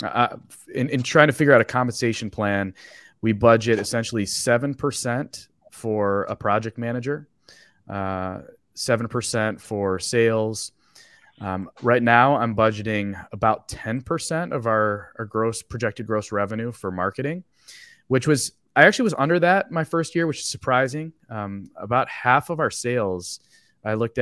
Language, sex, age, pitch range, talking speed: English, male, 20-39, 100-130 Hz, 155 wpm